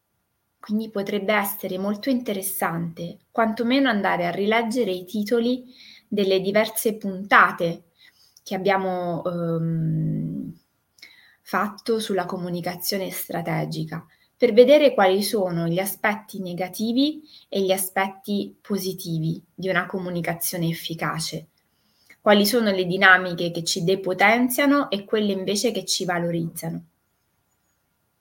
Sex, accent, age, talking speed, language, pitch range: female, native, 20-39, 105 wpm, Italian, 175-220 Hz